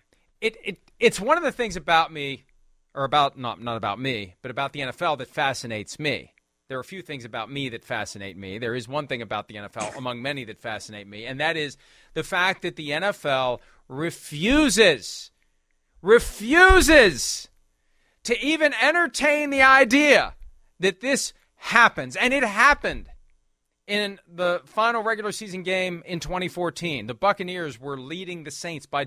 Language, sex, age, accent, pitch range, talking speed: English, male, 40-59, American, 140-205 Hz, 165 wpm